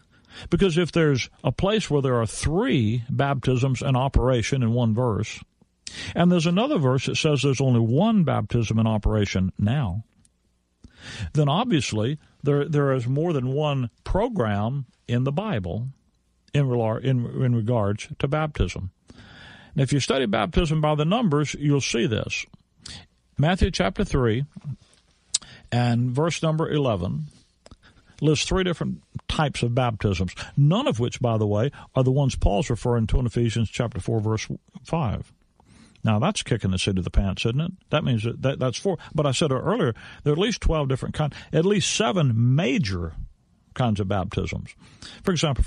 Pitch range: 110-150 Hz